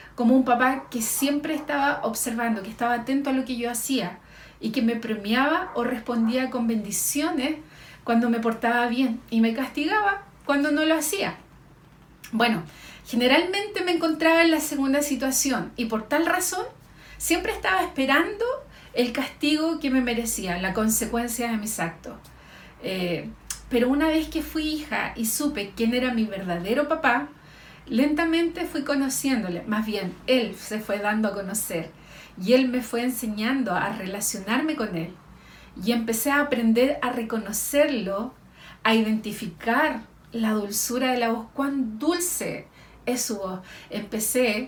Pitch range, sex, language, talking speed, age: 215-280 Hz, female, Spanish, 150 wpm, 40-59